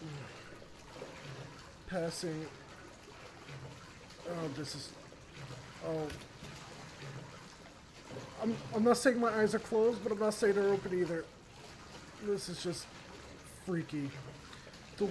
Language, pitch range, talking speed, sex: English, 160-225 Hz, 100 wpm, male